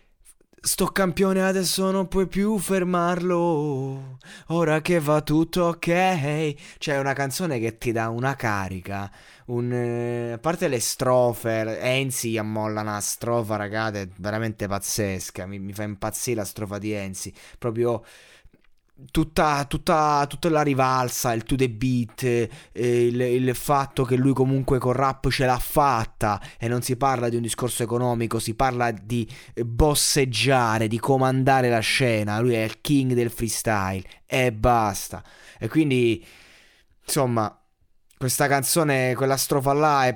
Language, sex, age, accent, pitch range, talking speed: Italian, male, 20-39, native, 110-145 Hz, 150 wpm